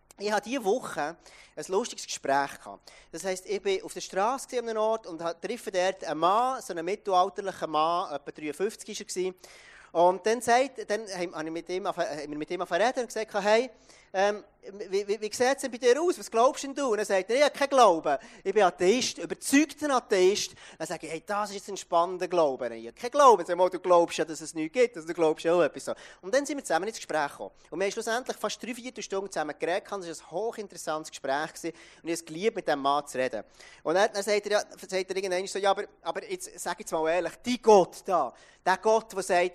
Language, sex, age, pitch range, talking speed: German, male, 30-49, 170-240 Hz, 240 wpm